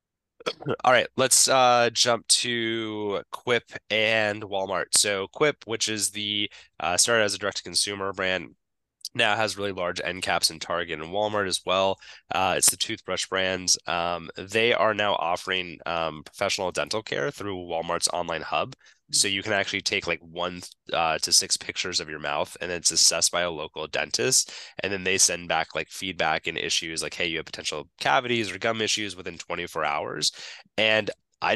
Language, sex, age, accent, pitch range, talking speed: English, male, 20-39, American, 85-110 Hz, 180 wpm